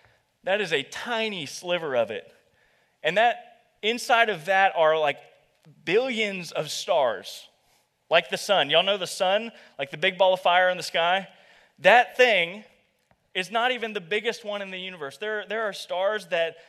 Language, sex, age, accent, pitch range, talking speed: English, male, 30-49, American, 175-225 Hz, 175 wpm